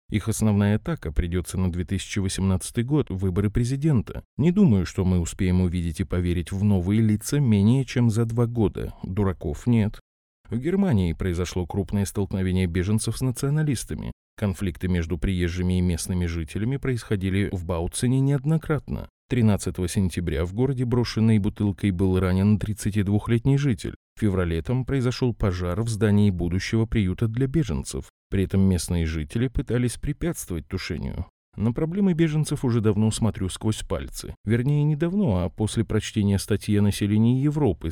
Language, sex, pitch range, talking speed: Russian, male, 90-120 Hz, 145 wpm